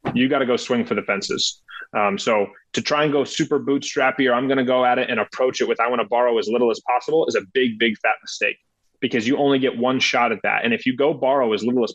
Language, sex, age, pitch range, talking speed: English, male, 30-49, 120-145 Hz, 285 wpm